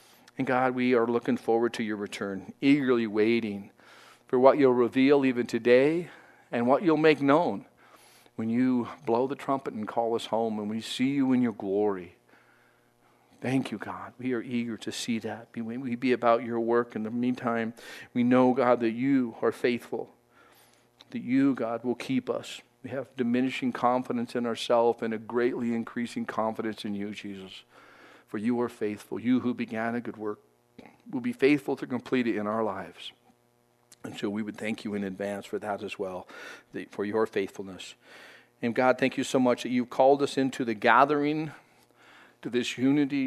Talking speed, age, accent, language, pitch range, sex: 185 wpm, 50-69, American, English, 110-130 Hz, male